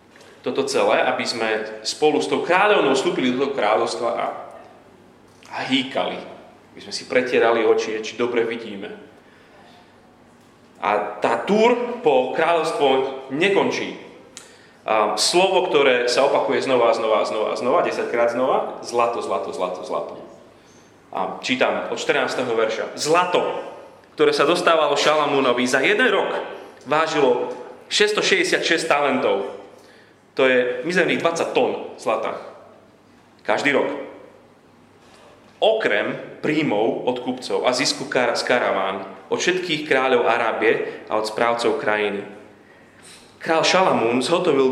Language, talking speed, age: Slovak, 115 wpm, 30-49